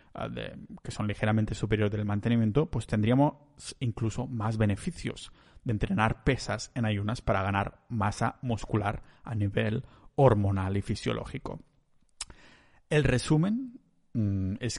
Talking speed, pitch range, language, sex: 115 wpm, 110-130 Hz, Spanish, male